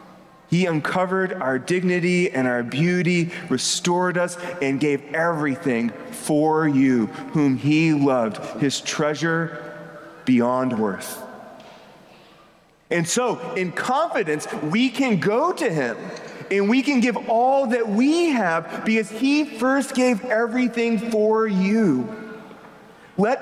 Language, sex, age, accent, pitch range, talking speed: English, male, 30-49, American, 175-240 Hz, 120 wpm